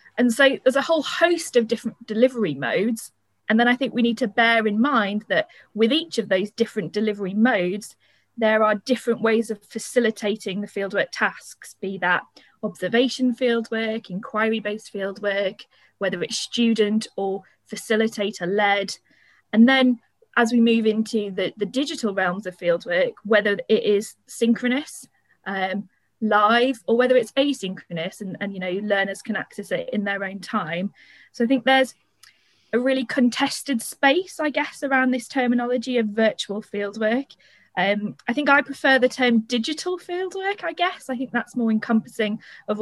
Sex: female